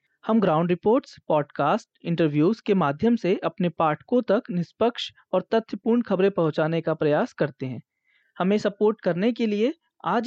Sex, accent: male, native